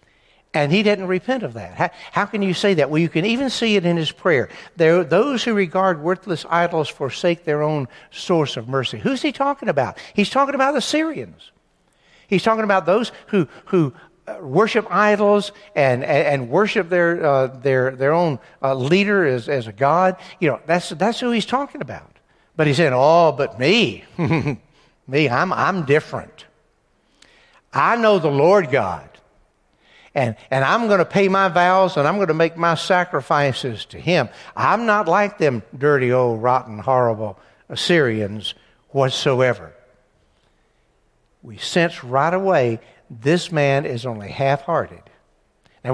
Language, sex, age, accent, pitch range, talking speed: English, male, 60-79, American, 130-195 Hz, 165 wpm